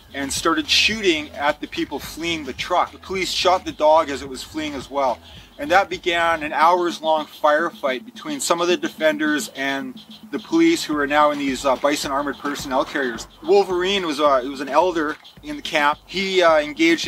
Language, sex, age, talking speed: English, male, 30-49, 205 wpm